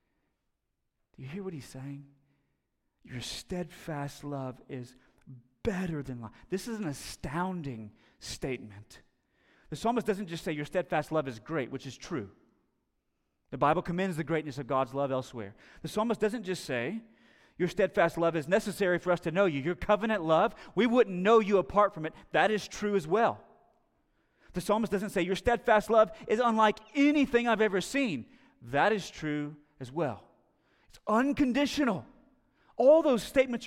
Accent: American